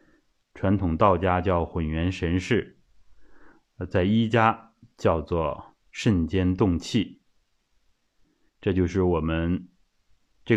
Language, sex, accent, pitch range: Chinese, male, native, 85-115 Hz